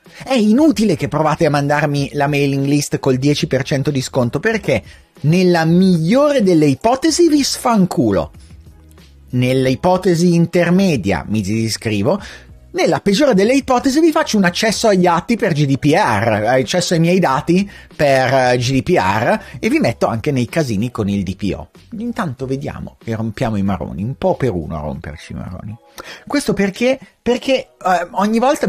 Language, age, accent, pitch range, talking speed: Italian, 30-49, native, 130-205 Hz, 150 wpm